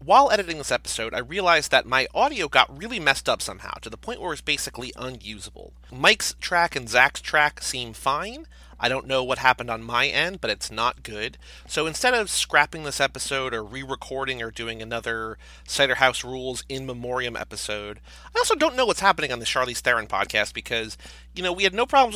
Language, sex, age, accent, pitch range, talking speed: English, male, 30-49, American, 115-155 Hz, 205 wpm